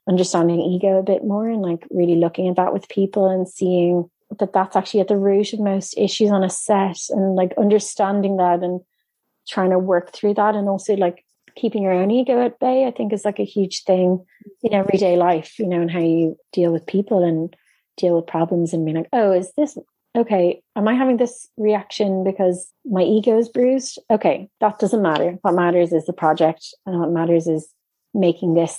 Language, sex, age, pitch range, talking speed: English, female, 30-49, 175-210 Hz, 210 wpm